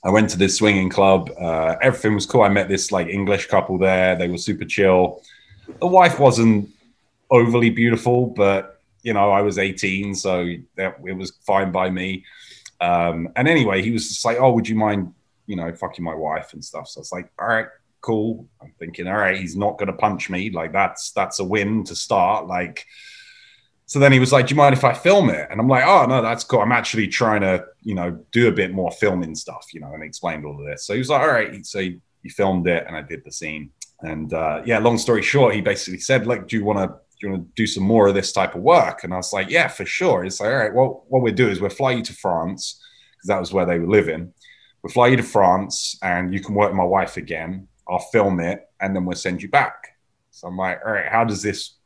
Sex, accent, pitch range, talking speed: male, British, 90-115 Hz, 250 wpm